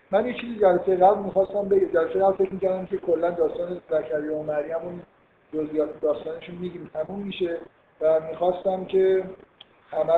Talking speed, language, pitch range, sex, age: 145 wpm, Persian, 155-185 Hz, male, 50-69